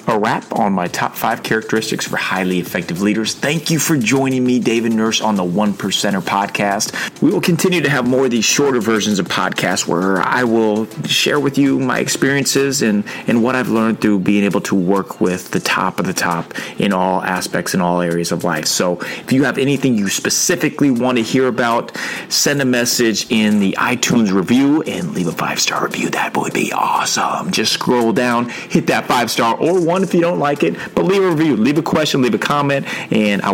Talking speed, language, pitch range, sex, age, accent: 215 wpm, English, 95-130 Hz, male, 30-49, American